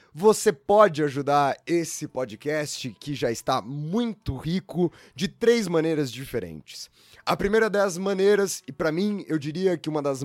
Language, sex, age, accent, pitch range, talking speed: Portuguese, male, 20-39, Brazilian, 135-180 Hz, 150 wpm